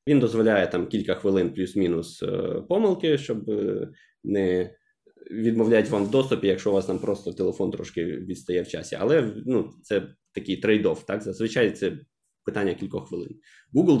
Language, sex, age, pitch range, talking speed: Ukrainian, male, 20-39, 95-120 Hz, 150 wpm